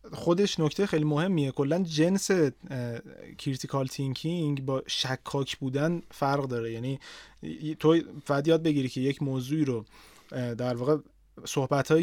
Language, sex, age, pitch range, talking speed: Persian, male, 30-49, 135-170 Hz, 125 wpm